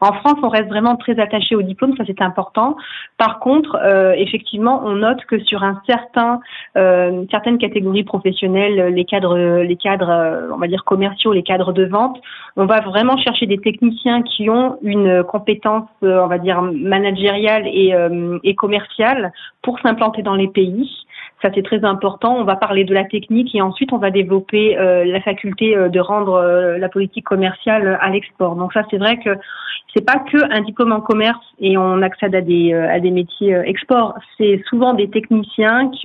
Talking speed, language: 195 wpm, French